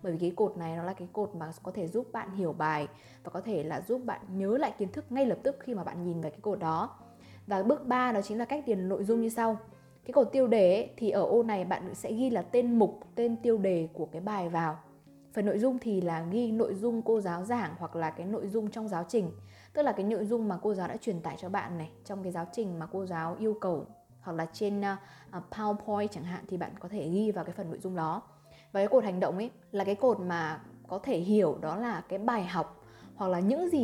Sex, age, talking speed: female, 20-39, 270 wpm